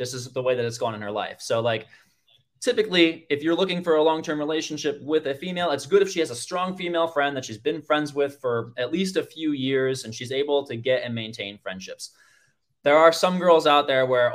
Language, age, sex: English, 20-39, male